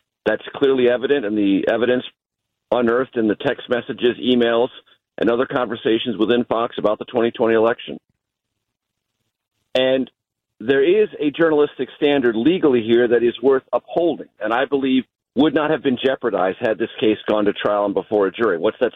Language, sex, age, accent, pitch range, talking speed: English, male, 50-69, American, 110-140 Hz, 170 wpm